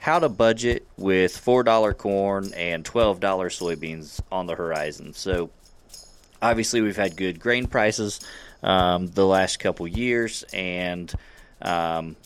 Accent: American